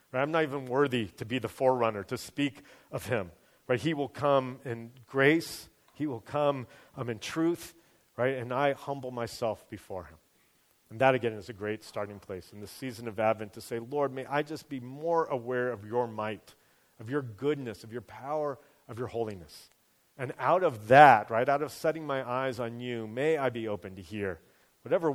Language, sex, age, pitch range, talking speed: English, male, 40-59, 115-145 Hz, 205 wpm